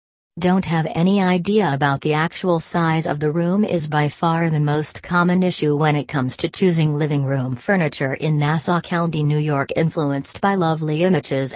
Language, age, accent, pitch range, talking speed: English, 40-59, American, 145-175 Hz, 180 wpm